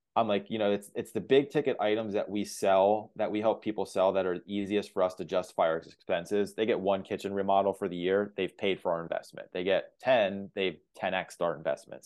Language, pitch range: English, 100-115 Hz